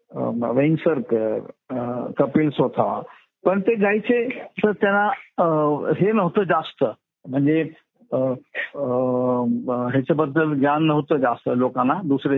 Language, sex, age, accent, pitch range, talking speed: Marathi, male, 50-69, native, 125-165 Hz, 90 wpm